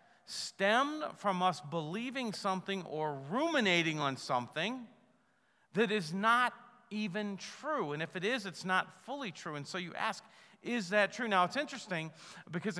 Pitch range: 160-215 Hz